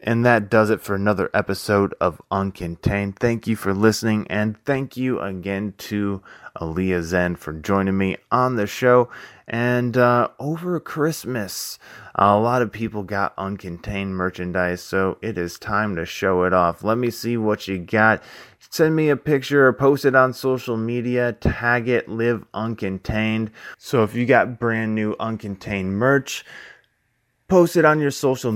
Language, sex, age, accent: English, male, 20-39, American